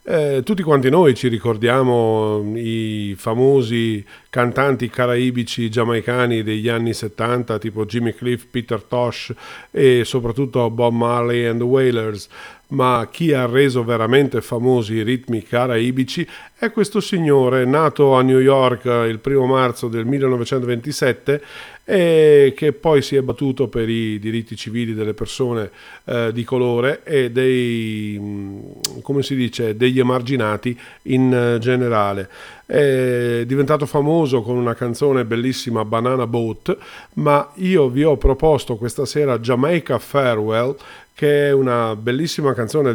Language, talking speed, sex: Italian, 130 wpm, male